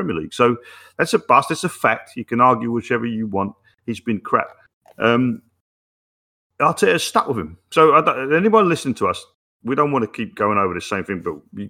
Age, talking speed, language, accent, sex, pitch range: 40-59, 215 wpm, English, British, male, 90-120 Hz